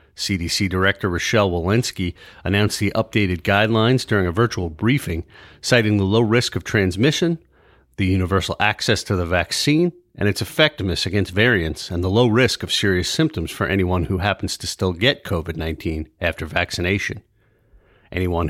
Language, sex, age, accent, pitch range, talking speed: English, male, 40-59, American, 90-120 Hz, 150 wpm